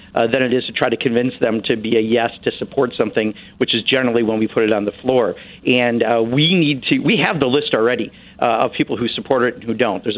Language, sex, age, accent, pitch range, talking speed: English, male, 50-69, American, 115-130 Hz, 265 wpm